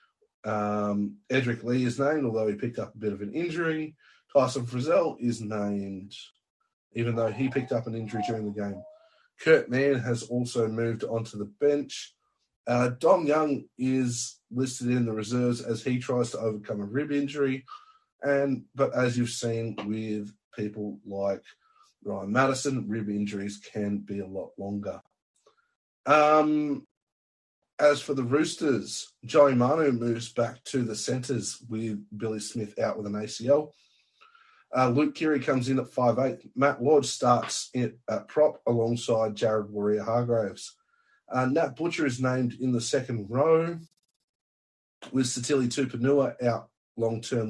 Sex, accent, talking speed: male, Australian, 150 wpm